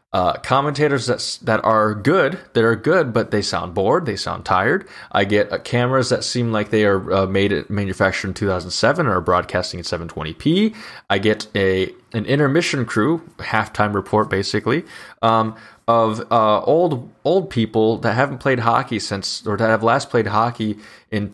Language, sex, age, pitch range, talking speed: English, male, 20-39, 105-145 Hz, 175 wpm